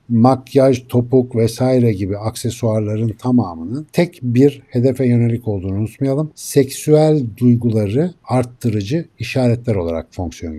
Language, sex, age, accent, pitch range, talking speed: Turkish, male, 60-79, native, 115-140 Hz, 100 wpm